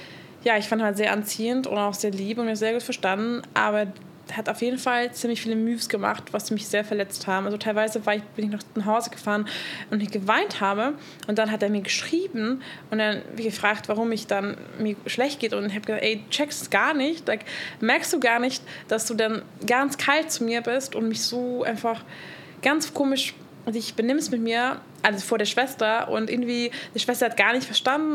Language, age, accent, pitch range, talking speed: German, 20-39, German, 210-245 Hz, 220 wpm